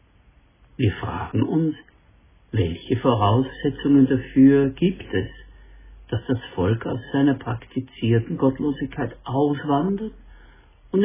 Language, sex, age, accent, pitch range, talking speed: German, male, 60-79, German, 95-135 Hz, 90 wpm